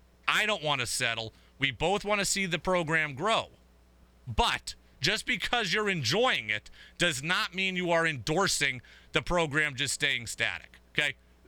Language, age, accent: English, 30-49, American